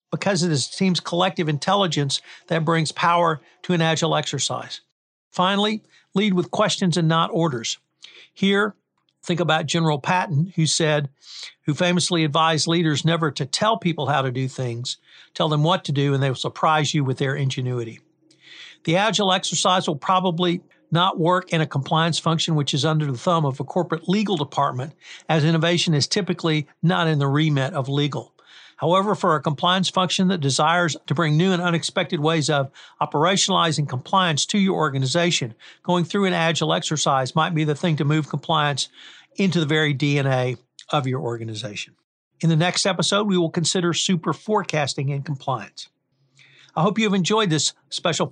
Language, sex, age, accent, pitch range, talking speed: English, male, 60-79, American, 145-180 Hz, 170 wpm